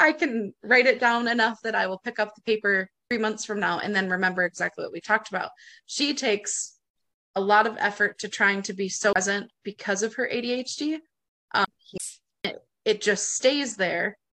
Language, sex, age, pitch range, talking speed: English, female, 20-39, 205-260 Hz, 195 wpm